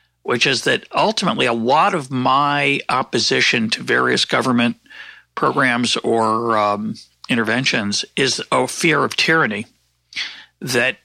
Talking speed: 120 wpm